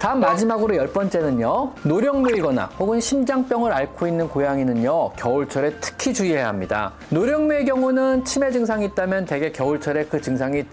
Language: Korean